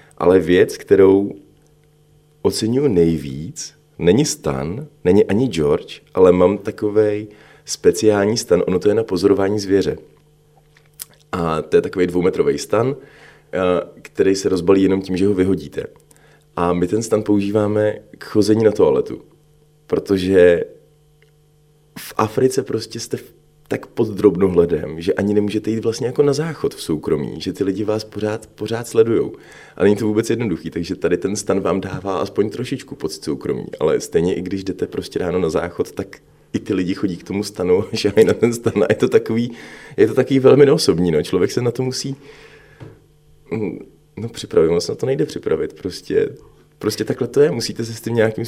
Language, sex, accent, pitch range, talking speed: Czech, male, native, 105-150 Hz, 170 wpm